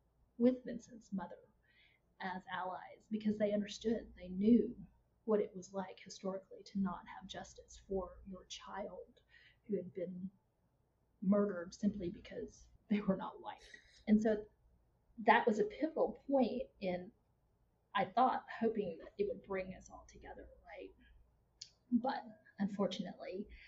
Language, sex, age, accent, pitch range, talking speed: English, female, 30-49, American, 180-215 Hz, 135 wpm